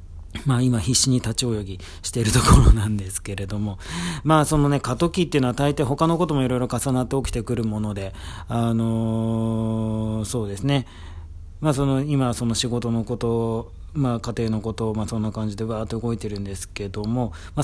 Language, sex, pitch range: Japanese, male, 100-135 Hz